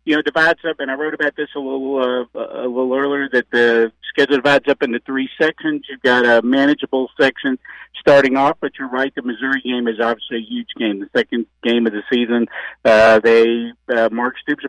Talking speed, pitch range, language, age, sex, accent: 215 wpm, 115-145 Hz, English, 50-69, male, American